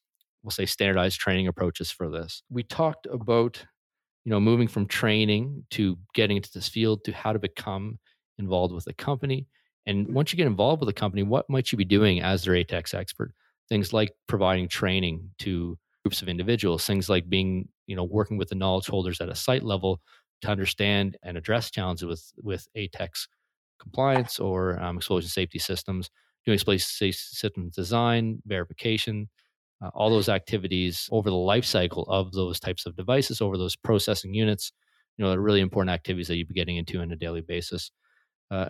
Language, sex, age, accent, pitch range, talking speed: English, male, 30-49, American, 90-110 Hz, 185 wpm